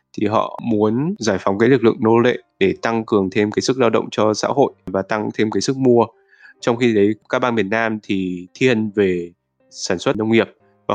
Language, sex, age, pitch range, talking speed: Vietnamese, male, 20-39, 100-120 Hz, 230 wpm